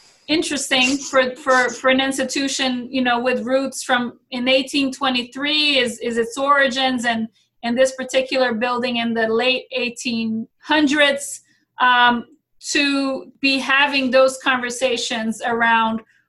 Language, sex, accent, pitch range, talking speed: English, female, American, 240-270 Hz, 120 wpm